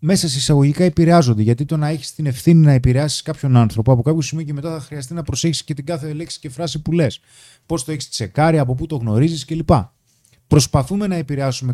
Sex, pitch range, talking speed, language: male, 120-160 Hz, 215 wpm, Greek